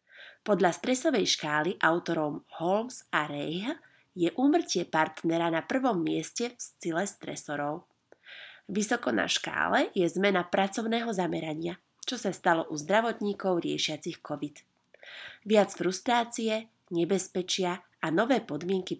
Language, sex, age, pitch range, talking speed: Slovak, female, 30-49, 160-215 Hz, 115 wpm